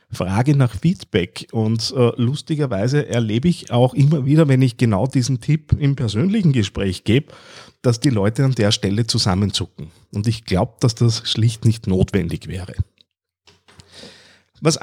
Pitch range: 110-150 Hz